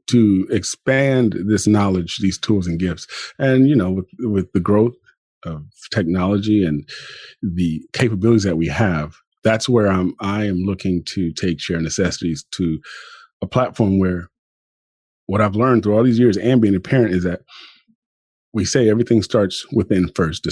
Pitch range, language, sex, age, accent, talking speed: 90-120 Hz, English, male, 30-49, American, 165 wpm